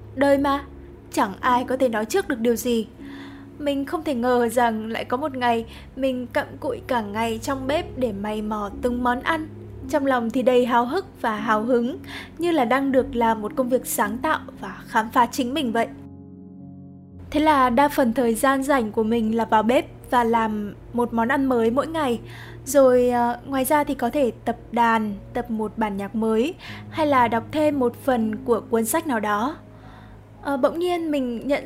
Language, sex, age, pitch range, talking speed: Vietnamese, female, 10-29, 230-280 Hz, 205 wpm